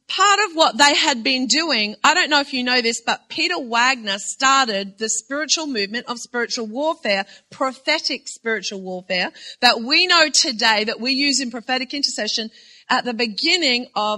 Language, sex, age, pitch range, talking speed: English, female, 40-59, 240-310 Hz, 175 wpm